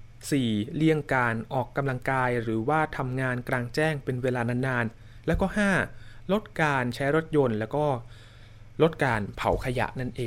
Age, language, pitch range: 20-39, Thai, 115-150 Hz